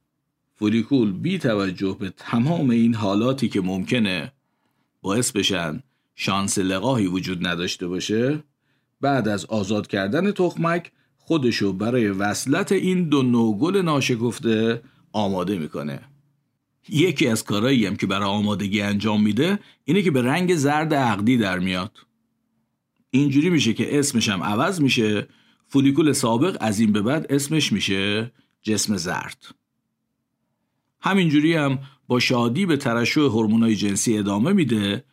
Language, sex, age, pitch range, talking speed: Persian, male, 50-69, 105-140 Hz, 125 wpm